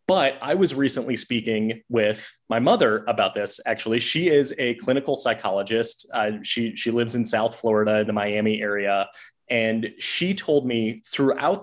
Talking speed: 160 wpm